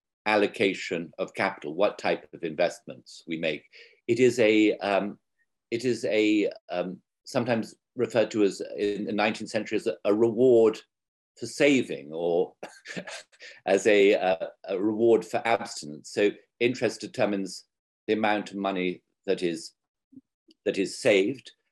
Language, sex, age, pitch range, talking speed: English, male, 50-69, 100-135 Hz, 140 wpm